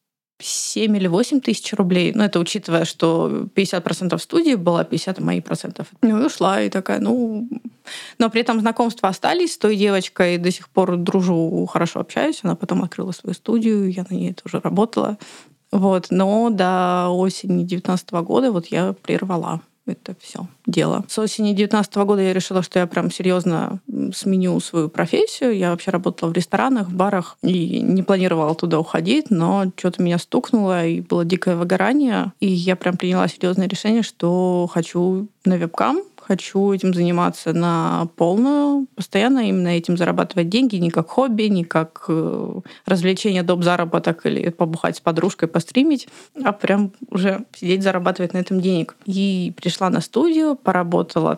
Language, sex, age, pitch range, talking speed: Russian, female, 20-39, 175-220 Hz, 160 wpm